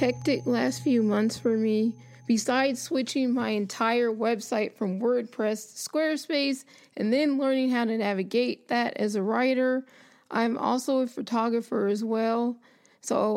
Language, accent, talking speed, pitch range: English, American, 140 wpm, 205-245 Hz